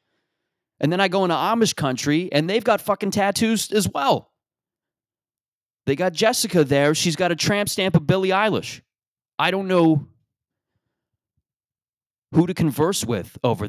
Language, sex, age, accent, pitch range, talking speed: English, male, 30-49, American, 115-160 Hz, 150 wpm